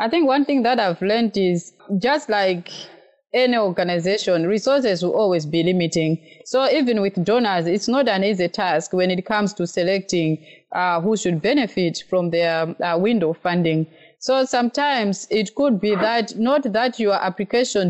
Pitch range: 175-230 Hz